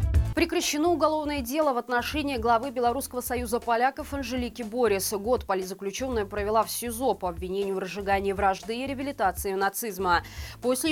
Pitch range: 195-255 Hz